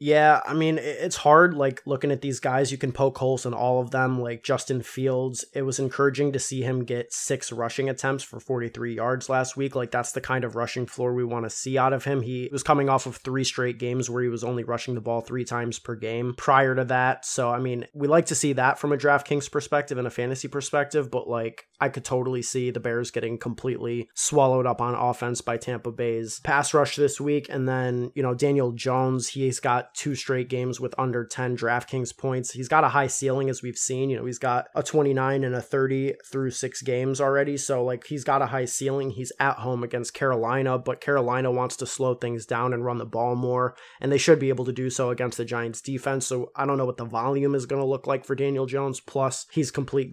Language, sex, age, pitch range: English, male, 20-39, 125-135 Hz